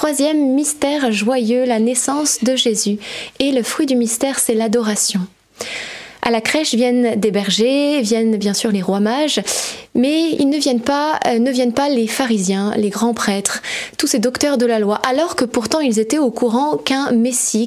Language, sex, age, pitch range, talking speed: French, female, 20-39, 225-280 Hz, 185 wpm